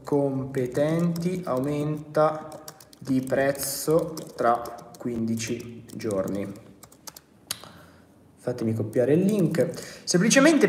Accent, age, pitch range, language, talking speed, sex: native, 20-39, 140-180 Hz, Italian, 65 wpm, male